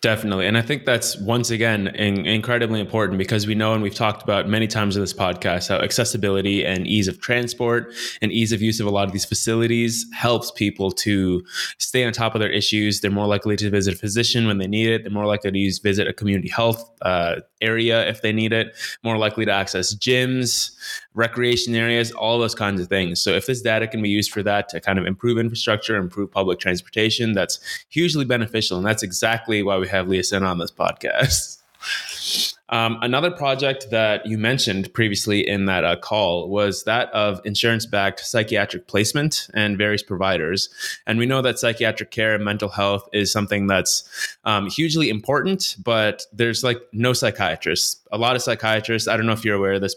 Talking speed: 200 wpm